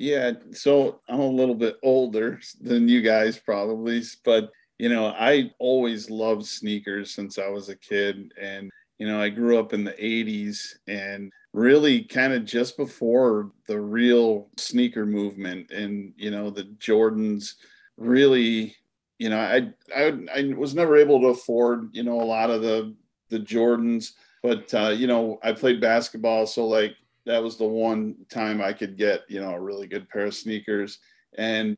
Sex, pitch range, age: male, 105-120 Hz, 40-59